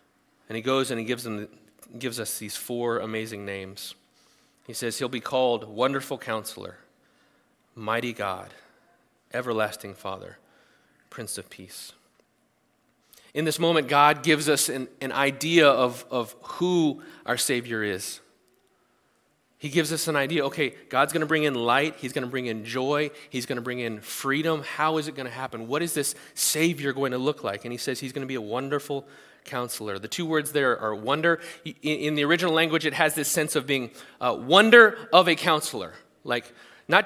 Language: English